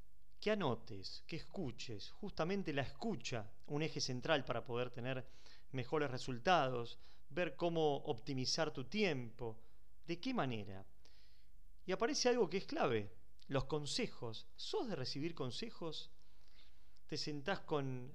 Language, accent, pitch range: Spanish, Argentinian, 120-165 Hz